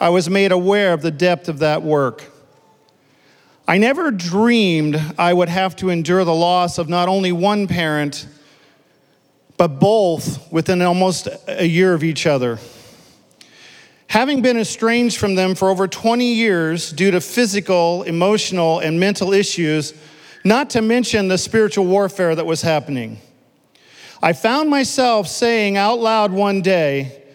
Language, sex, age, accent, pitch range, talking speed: English, male, 40-59, American, 165-220 Hz, 145 wpm